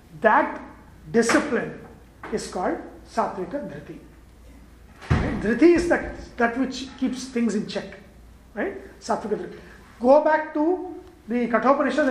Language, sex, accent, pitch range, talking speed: English, male, Indian, 220-275 Hz, 120 wpm